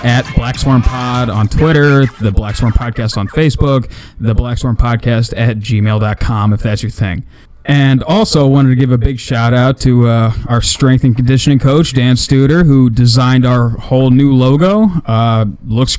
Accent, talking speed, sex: American, 175 wpm, male